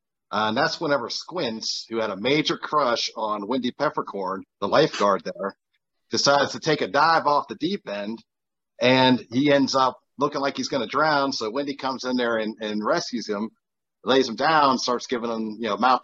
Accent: American